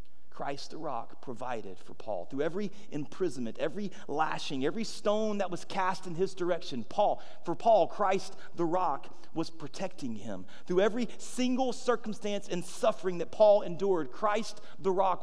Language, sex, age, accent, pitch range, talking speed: English, male, 40-59, American, 175-225 Hz, 160 wpm